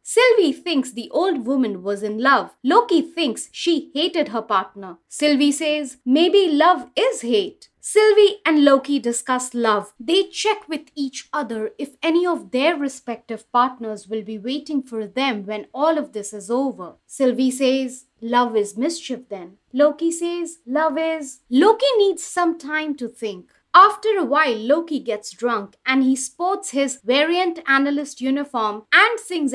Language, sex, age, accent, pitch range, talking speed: English, female, 30-49, Indian, 235-325 Hz, 160 wpm